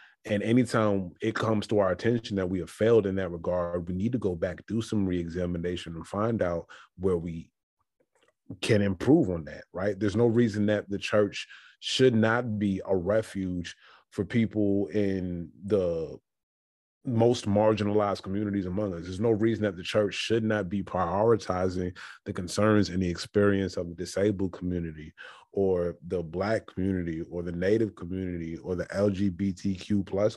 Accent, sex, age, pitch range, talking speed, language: American, male, 30-49, 90-105 Hz, 165 wpm, English